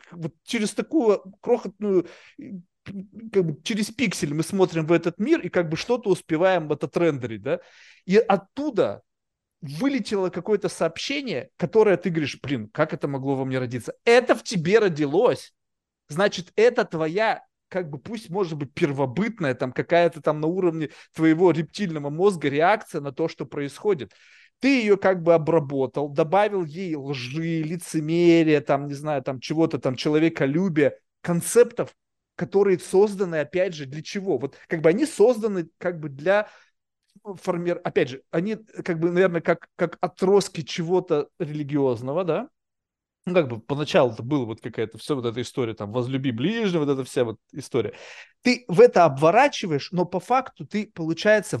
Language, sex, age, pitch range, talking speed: Russian, male, 30-49, 150-200 Hz, 155 wpm